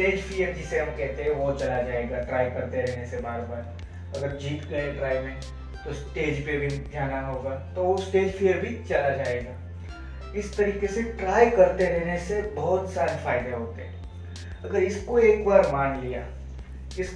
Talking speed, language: 50 wpm, Hindi